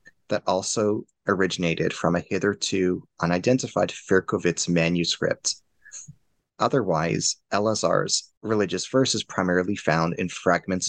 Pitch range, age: 85-105 Hz, 30-49